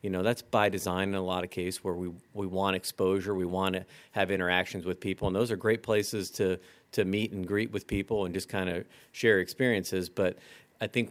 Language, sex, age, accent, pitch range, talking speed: English, male, 40-59, American, 90-110 Hz, 230 wpm